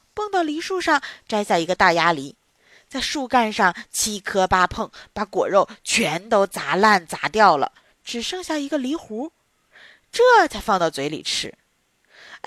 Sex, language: female, Chinese